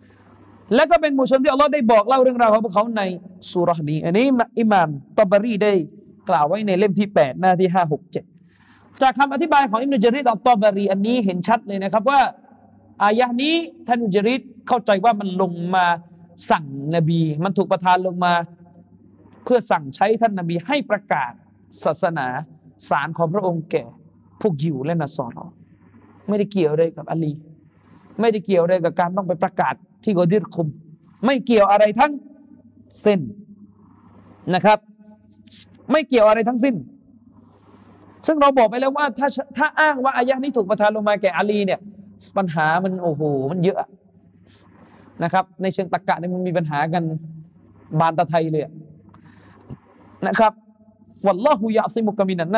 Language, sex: Thai, male